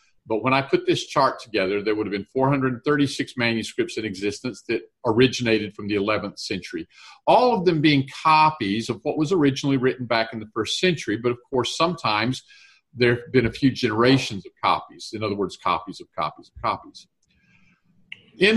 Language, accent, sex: English, American, male